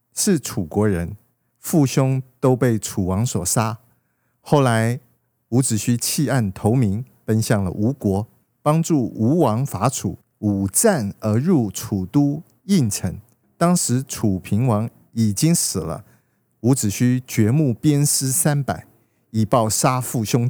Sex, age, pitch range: male, 50-69, 105-140 Hz